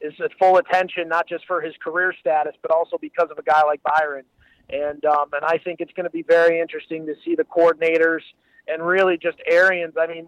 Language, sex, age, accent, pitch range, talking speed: English, male, 30-49, American, 160-185 Hz, 230 wpm